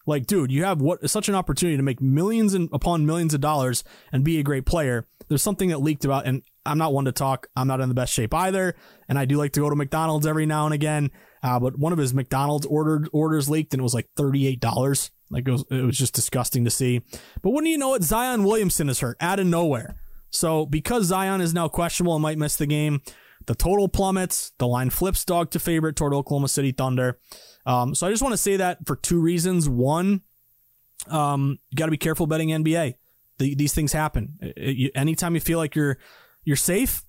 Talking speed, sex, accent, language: 230 wpm, male, American, English